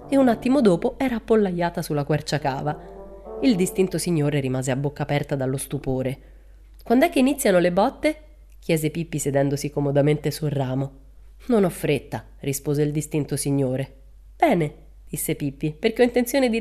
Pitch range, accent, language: 140-190 Hz, native, Italian